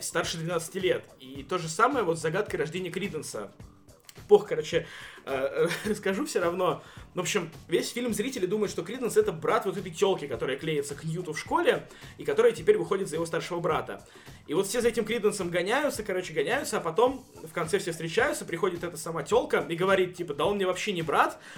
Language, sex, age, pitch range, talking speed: Russian, male, 20-39, 170-215 Hz, 200 wpm